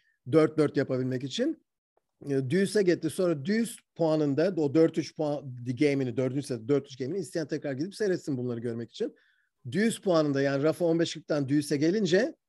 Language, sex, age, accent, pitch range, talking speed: Turkish, male, 50-69, native, 135-175 Hz, 140 wpm